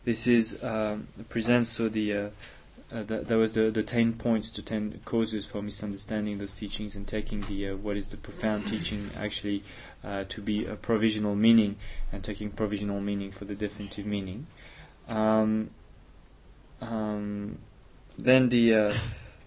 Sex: male